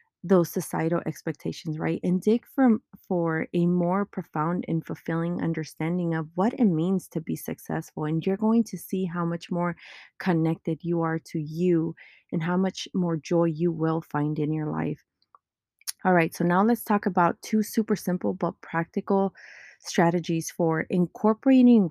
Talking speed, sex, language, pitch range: 165 wpm, female, English, 165-195 Hz